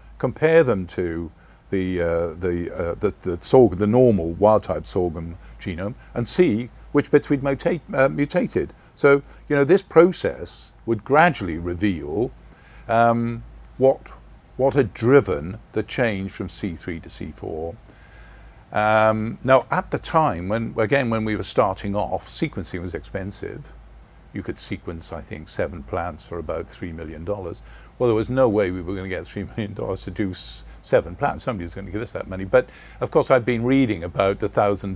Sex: male